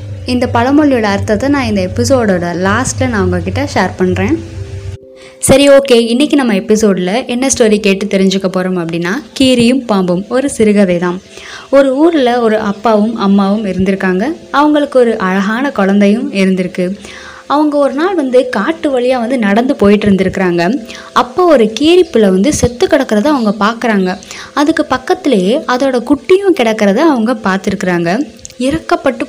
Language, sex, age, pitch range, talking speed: Tamil, female, 20-39, 195-265 Hz, 130 wpm